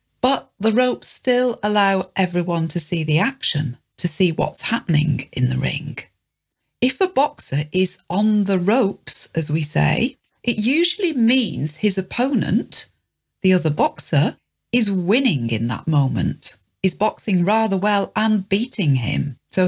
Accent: British